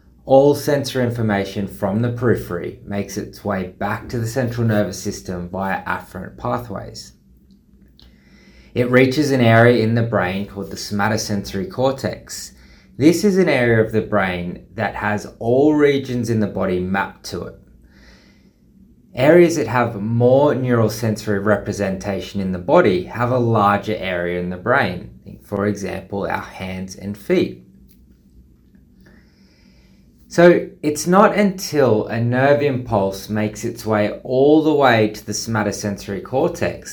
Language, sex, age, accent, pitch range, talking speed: English, male, 20-39, Australian, 95-120 Hz, 140 wpm